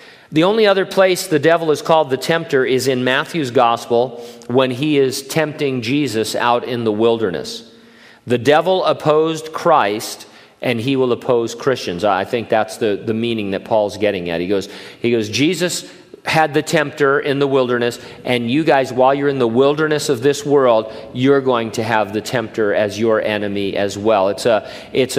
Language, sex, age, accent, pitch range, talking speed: English, male, 50-69, American, 115-150 Hz, 185 wpm